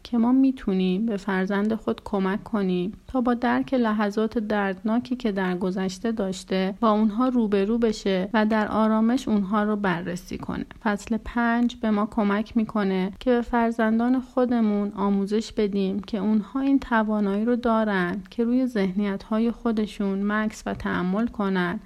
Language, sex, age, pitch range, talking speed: Persian, female, 30-49, 200-240 Hz, 150 wpm